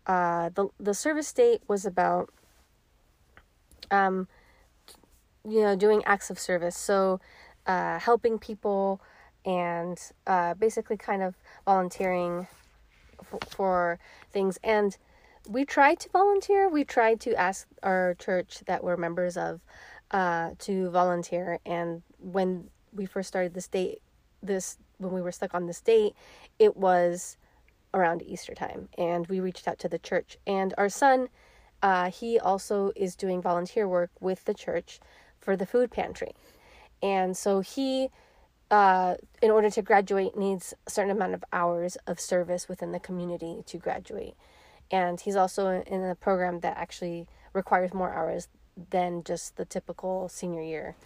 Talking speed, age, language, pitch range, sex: 150 wpm, 30-49, English, 175-210 Hz, female